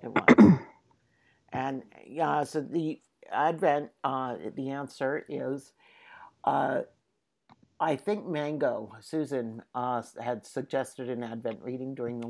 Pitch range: 130-175 Hz